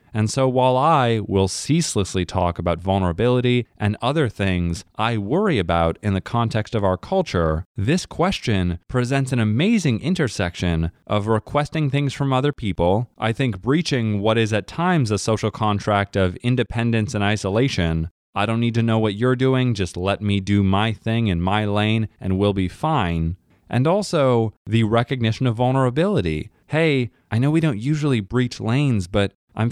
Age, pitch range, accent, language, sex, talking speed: 20-39, 100-135 Hz, American, English, male, 170 wpm